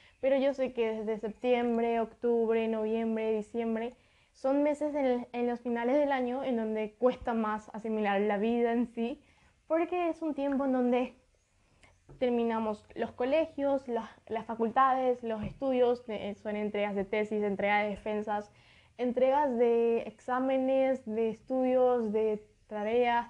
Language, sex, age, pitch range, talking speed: Spanish, female, 10-29, 220-265 Hz, 135 wpm